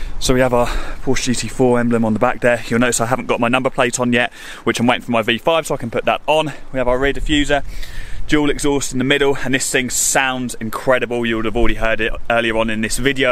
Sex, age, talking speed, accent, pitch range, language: male, 20-39, 265 wpm, British, 115-145 Hz, English